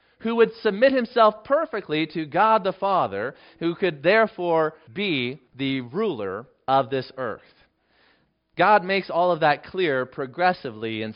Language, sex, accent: English, male, American